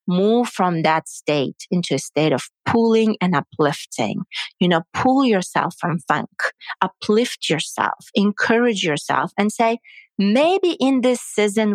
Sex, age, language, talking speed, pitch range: female, 40-59, English, 140 wpm, 175-240 Hz